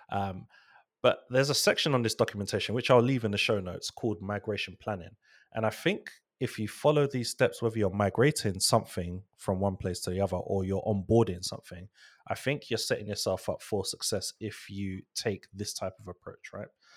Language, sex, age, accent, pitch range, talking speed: English, male, 20-39, British, 95-110 Hz, 200 wpm